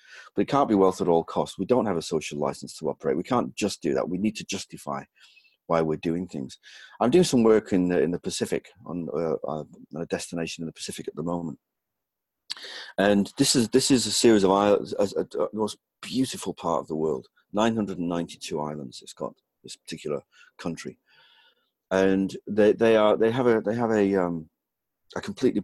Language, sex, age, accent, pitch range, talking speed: English, male, 40-59, British, 85-105 Hz, 205 wpm